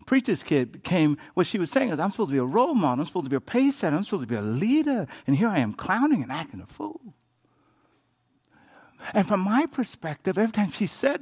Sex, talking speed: male, 240 wpm